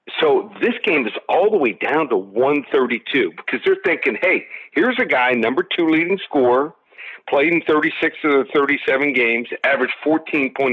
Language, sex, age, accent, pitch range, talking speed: English, male, 50-69, American, 120-155 Hz, 160 wpm